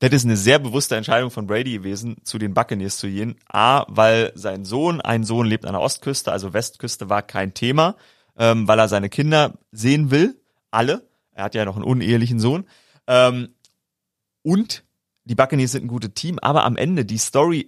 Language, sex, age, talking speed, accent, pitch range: German, male, 30-49, 195 wpm, German, 110-135 Hz